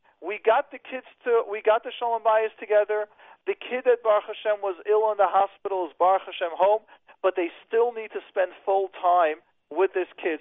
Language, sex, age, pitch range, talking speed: English, male, 40-59, 180-220 Hz, 210 wpm